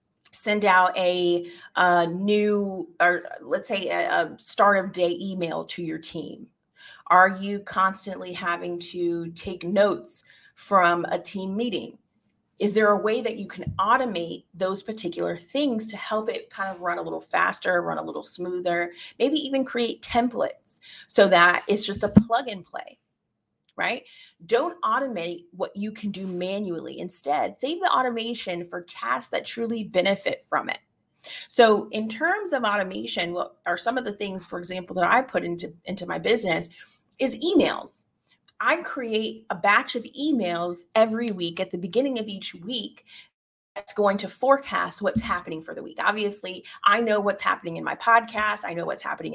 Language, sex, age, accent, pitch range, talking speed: English, female, 30-49, American, 175-230 Hz, 170 wpm